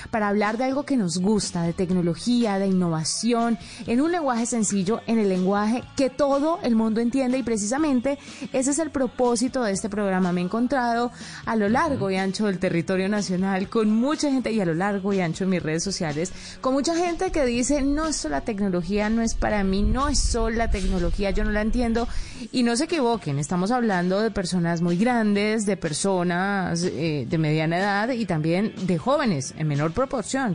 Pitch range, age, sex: 180-235 Hz, 30-49, female